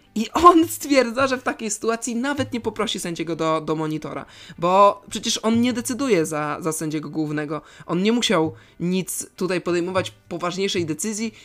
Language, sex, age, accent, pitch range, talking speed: Polish, male, 20-39, native, 160-205 Hz, 160 wpm